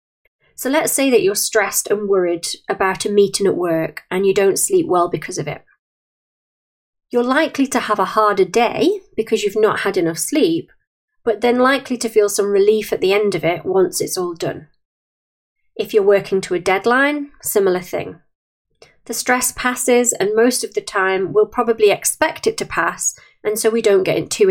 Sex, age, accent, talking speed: female, 30-49, British, 190 wpm